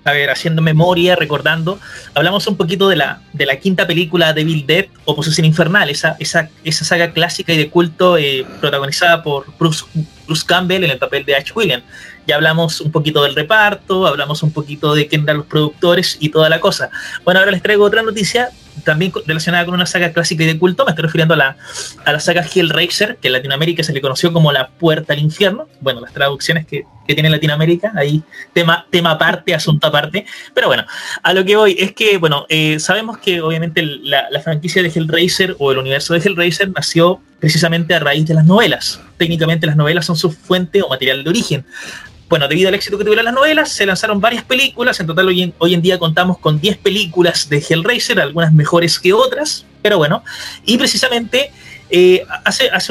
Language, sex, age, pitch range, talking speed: Spanish, male, 30-49, 155-190 Hz, 205 wpm